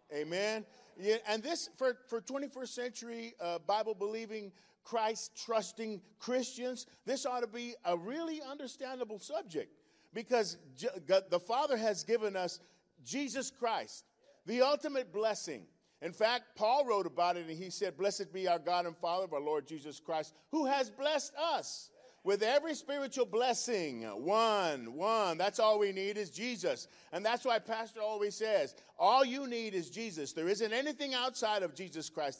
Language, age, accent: English, 40-59, American